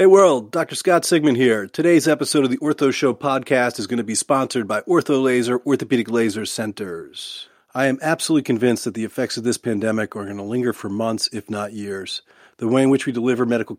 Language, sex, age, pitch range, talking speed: English, male, 40-59, 110-135 Hz, 215 wpm